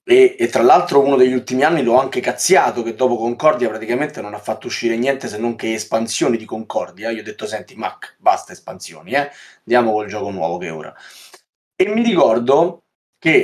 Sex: male